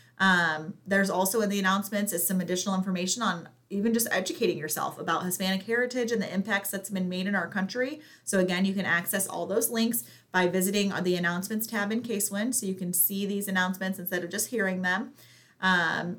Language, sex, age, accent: English, female, 30-49, American